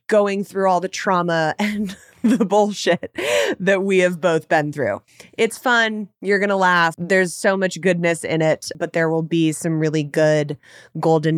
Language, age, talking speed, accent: English, 20-39, 180 wpm, American